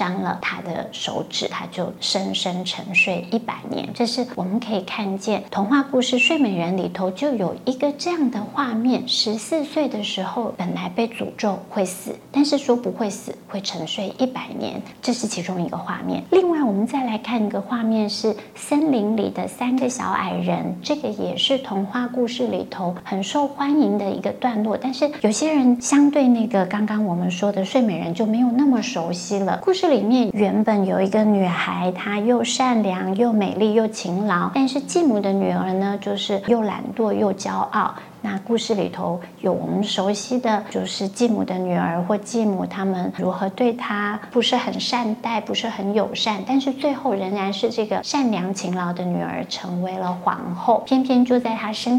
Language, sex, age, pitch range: Chinese, female, 30-49, 195-250 Hz